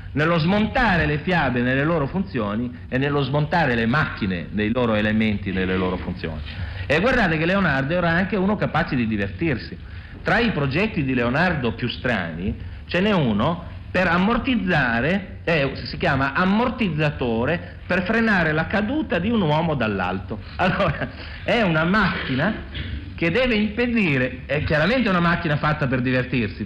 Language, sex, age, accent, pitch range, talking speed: Italian, male, 50-69, native, 105-170 Hz, 150 wpm